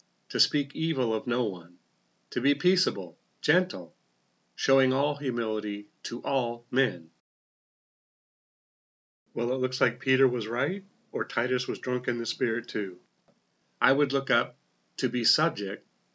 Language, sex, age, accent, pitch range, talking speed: English, male, 40-59, American, 110-135 Hz, 140 wpm